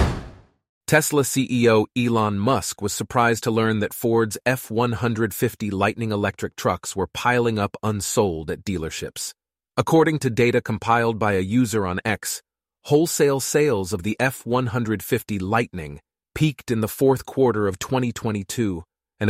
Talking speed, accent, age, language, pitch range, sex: 135 wpm, American, 40-59, English, 100-120 Hz, male